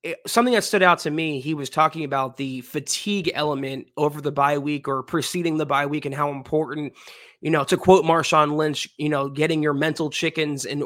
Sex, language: male, English